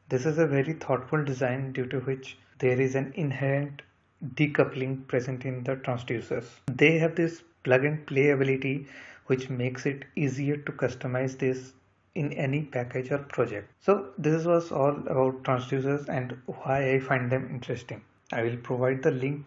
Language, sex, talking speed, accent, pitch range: English, male, 160 wpm, Indian, 125-140 Hz